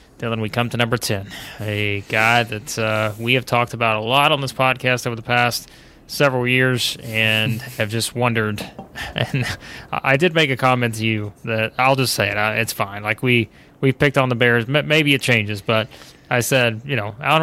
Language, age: English, 20-39